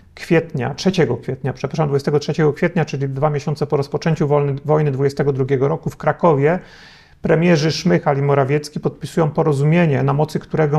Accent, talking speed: native, 140 wpm